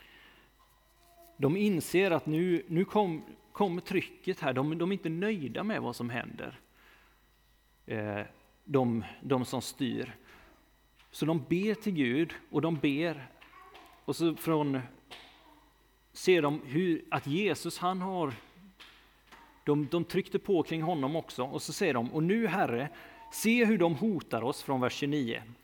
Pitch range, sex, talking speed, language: 125-175 Hz, male, 145 wpm, Swedish